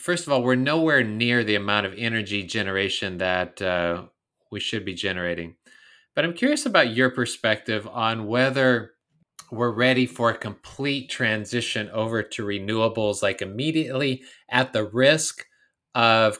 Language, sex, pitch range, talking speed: English, male, 105-135 Hz, 145 wpm